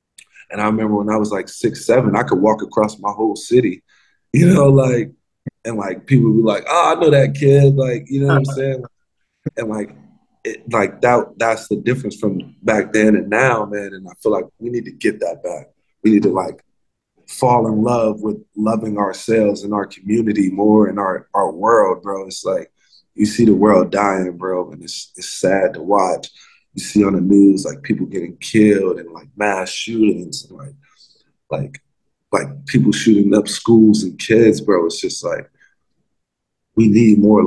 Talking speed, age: 195 wpm, 20-39